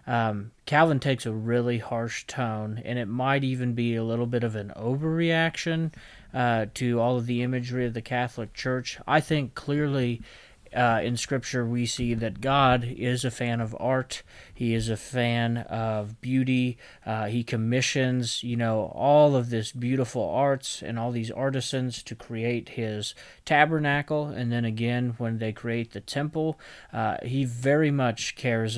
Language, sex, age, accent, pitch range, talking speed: English, male, 30-49, American, 115-130 Hz, 165 wpm